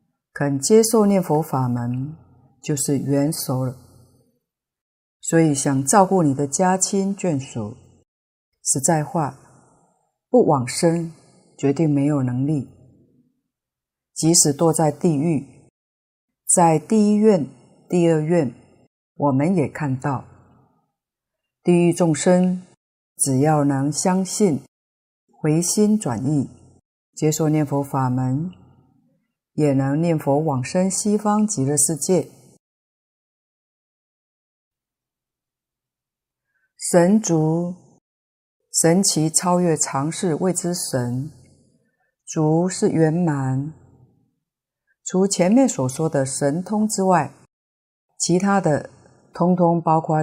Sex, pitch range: female, 135-180 Hz